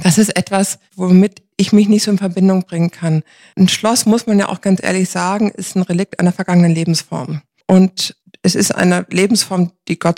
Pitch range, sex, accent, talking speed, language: 165-190 Hz, female, German, 200 wpm, German